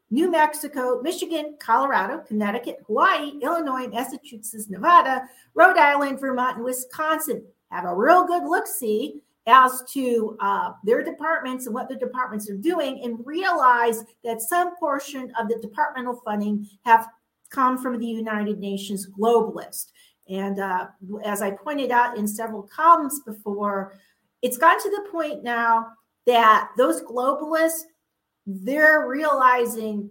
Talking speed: 135 wpm